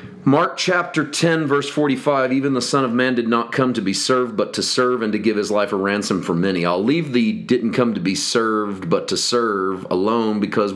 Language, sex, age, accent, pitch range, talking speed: English, male, 40-59, American, 95-120 Hz, 230 wpm